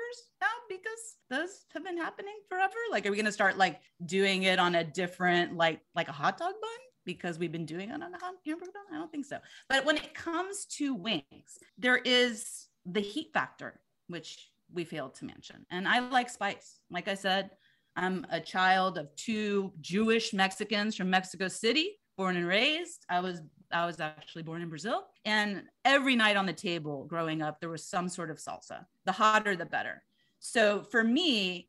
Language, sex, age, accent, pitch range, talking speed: English, female, 30-49, American, 175-265 Hz, 195 wpm